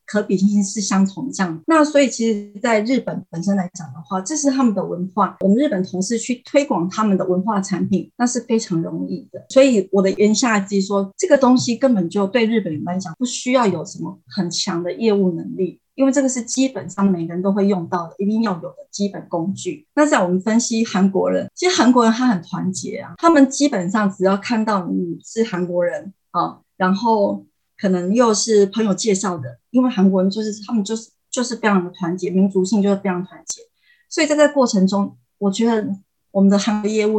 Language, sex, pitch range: Chinese, female, 185-225 Hz